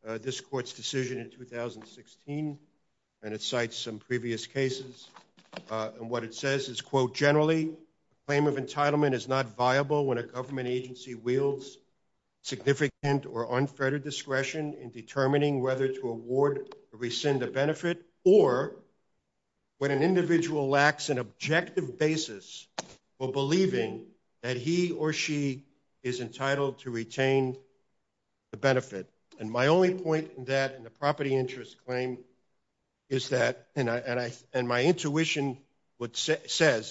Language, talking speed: English, 145 wpm